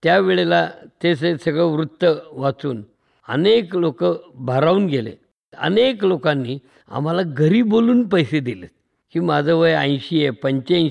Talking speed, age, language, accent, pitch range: 100 wpm, 50-69, Hindi, native, 145-185 Hz